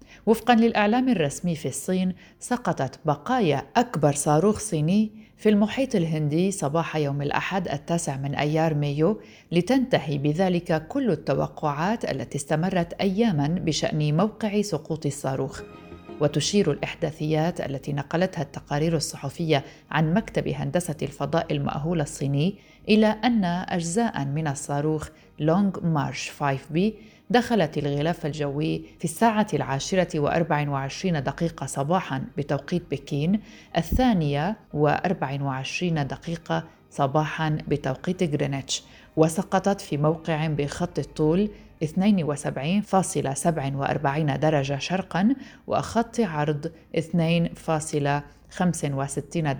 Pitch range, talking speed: 145-185 Hz, 95 wpm